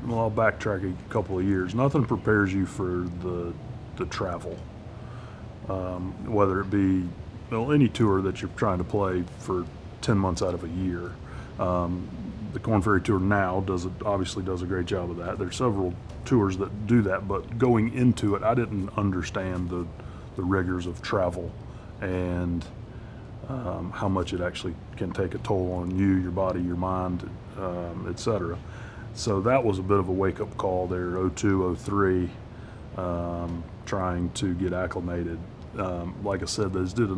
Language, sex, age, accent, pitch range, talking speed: English, male, 30-49, American, 90-110 Hz, 175 wpm